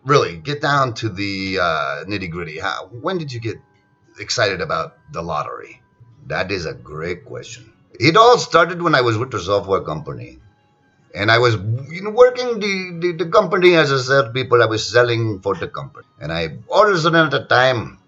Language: English